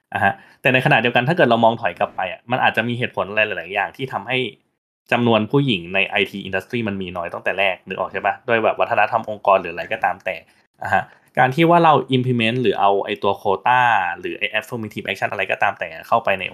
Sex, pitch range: male, 100-130 Hz